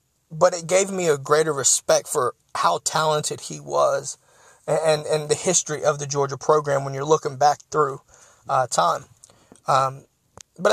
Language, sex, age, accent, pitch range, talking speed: English, male, 30-49, American, 140-165 Hz, 170 wpm